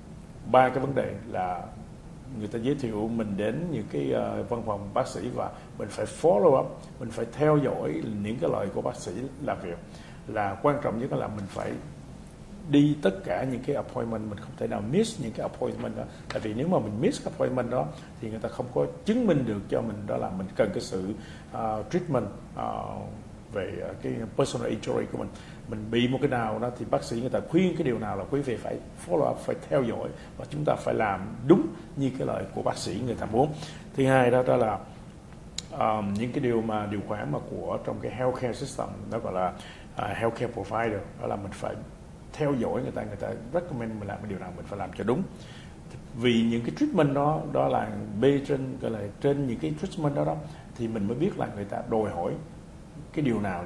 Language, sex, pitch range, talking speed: English, male, 105-135 Hz, 225 wpm